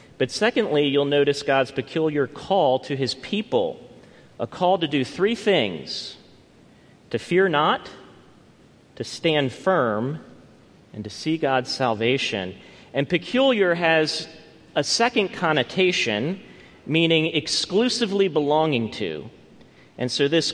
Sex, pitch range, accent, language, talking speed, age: male, 125-165 Hz, American, English, 115 wpm, 40-59